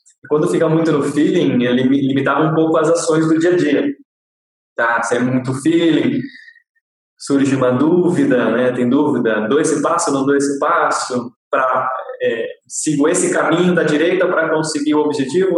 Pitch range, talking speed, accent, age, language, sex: 135-170 Hz, 175 wpm, Brazilian, 20-39, Portuguese, male